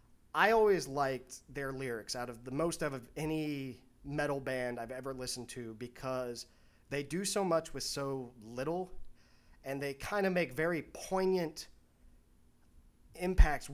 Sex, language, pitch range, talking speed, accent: male, English, 130-155 Hz, 145 wpm, American